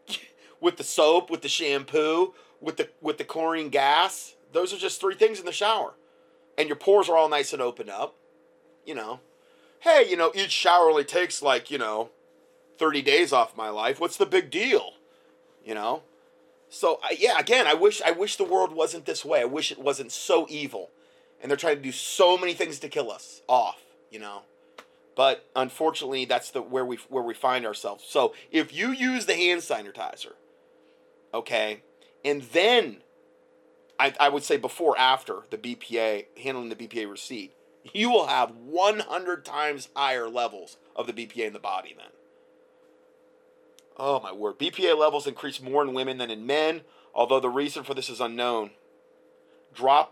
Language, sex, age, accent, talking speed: English, male, 30-49, American, 180 wpm